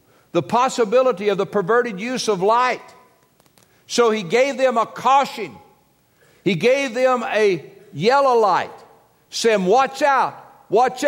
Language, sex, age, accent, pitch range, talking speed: English, male, 60-79, American, 135-190 Hz, 130 wpm